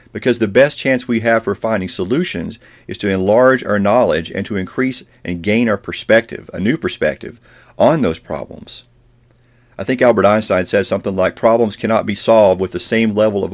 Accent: American